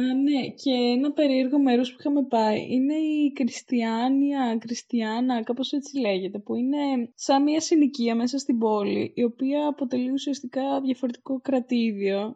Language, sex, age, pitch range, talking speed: Greek, female, 20-39, 225-280 Hz, 145 wpm